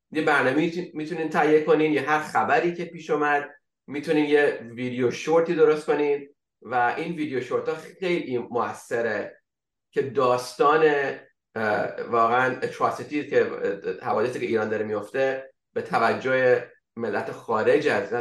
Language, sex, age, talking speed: English, male, 30-49, 130 wpm